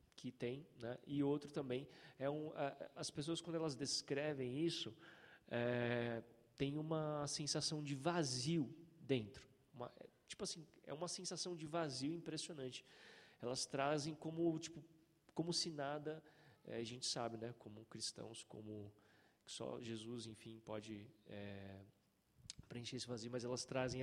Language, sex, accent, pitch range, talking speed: Portuguese, male, Brazilian, 125-160 Hz, 140 wpm